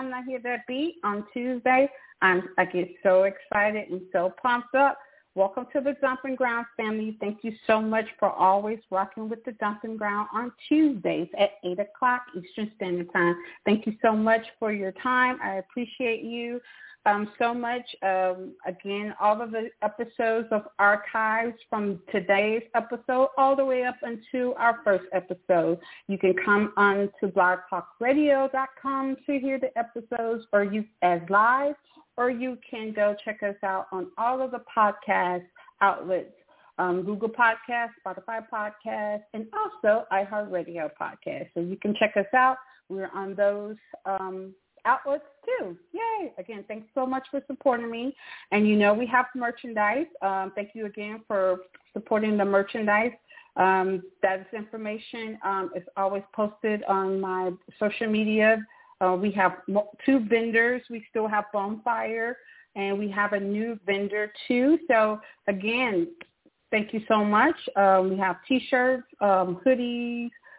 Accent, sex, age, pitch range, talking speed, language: American, female, 40-59, 200-250 Hz, 150 wpm, English